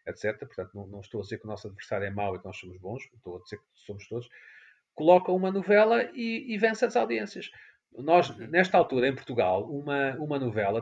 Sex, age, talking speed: male, 40-59, 220 wpm